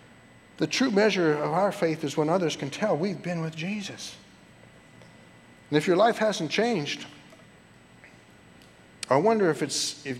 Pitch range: 120-150 Hz